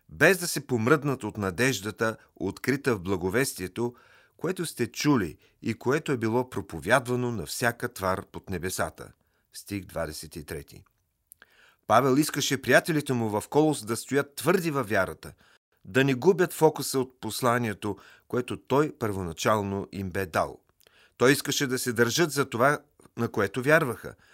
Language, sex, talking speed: Bulgarian, male, 140 wpm